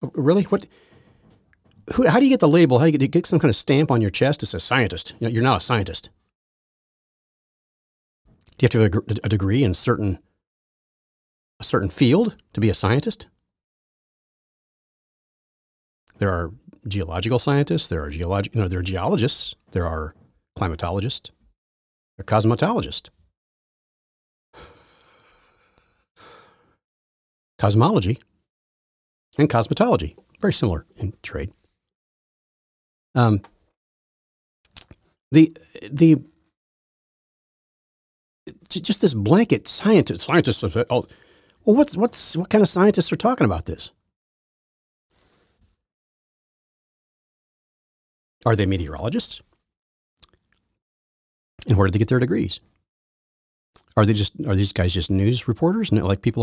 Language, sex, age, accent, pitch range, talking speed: English, male, 40-59, American, 95-145 Hz, 115 wpm